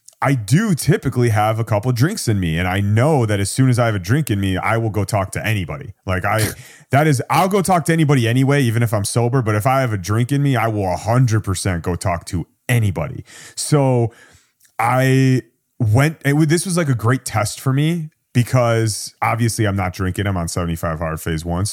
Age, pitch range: 30-49, 105-145 Hz